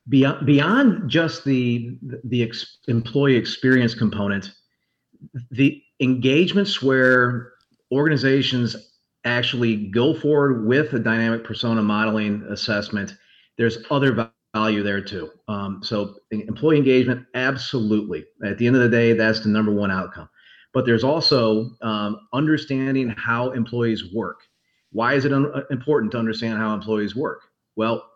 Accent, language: American, English